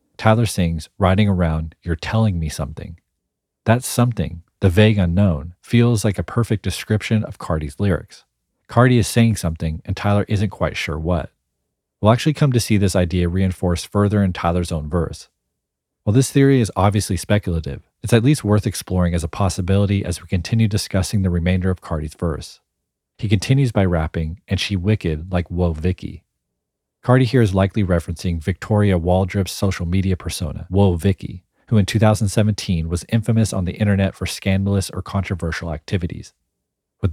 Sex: male